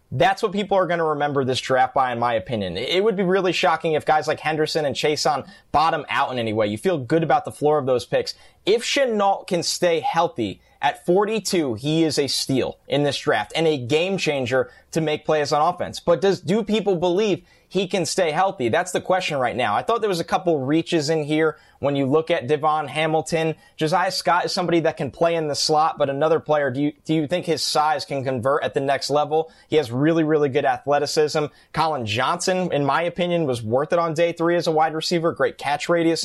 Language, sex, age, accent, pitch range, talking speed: English, male, 20-39, American, 145-175 Hz, 230 wpm